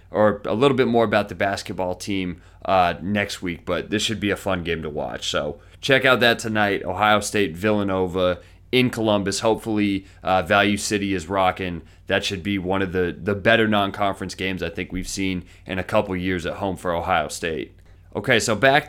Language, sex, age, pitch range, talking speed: English, male, 30-49, 95-120 Hz, 200 wpm